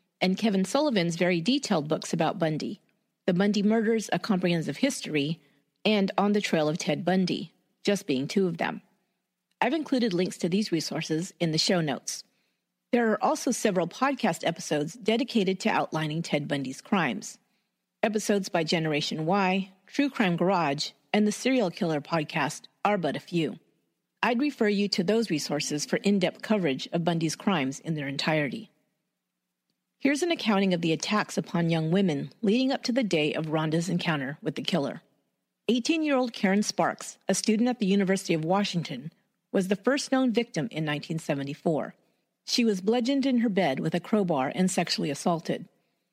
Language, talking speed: English, 165 wpm